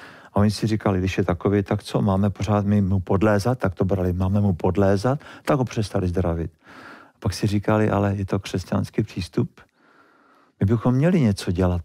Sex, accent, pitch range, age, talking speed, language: male, native, 95-120 Hz, 50-69, 185 wpm, Czech